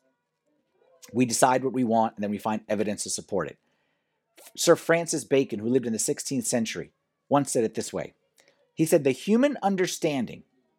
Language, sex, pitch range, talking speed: English, male, 135-220 Hz, 180 wpm